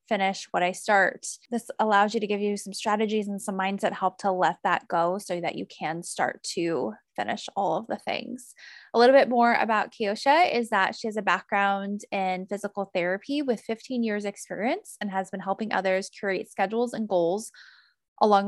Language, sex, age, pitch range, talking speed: English, female, 10-29, 195-240 Hz, 195 wpm